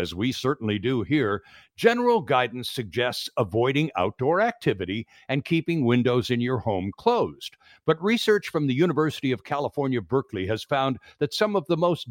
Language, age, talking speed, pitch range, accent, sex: English, 60-79, 165 wpm, 125-185 Hz, American, male